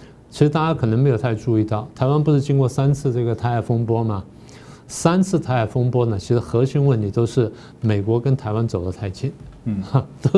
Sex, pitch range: male, 115-145 Hz